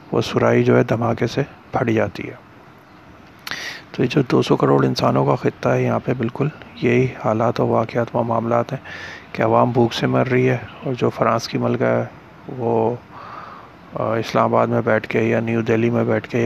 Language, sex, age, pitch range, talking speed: Urdu, male, 30-49, 100-120 Hz, 195 wpm